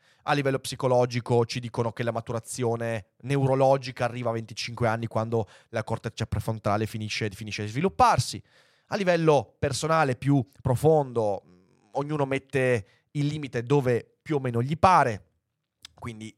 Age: 30-49